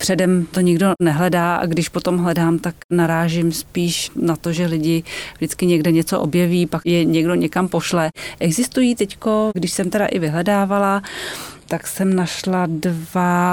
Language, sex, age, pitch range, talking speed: Czech, female, 30-49, 165-185 Hz, 155 wpm